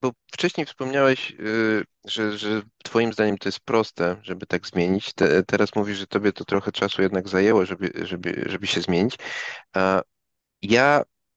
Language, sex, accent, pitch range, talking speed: Polish, male, native, 95-120 Hz, 150 wpm